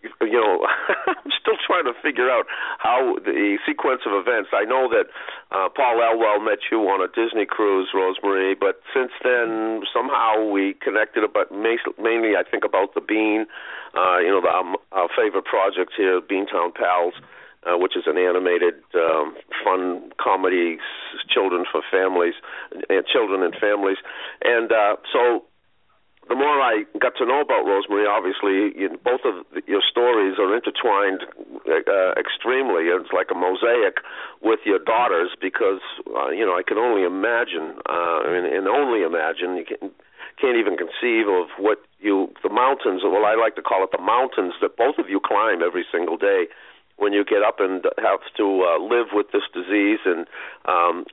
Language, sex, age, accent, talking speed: English, male, 50-69, American, 170 wpm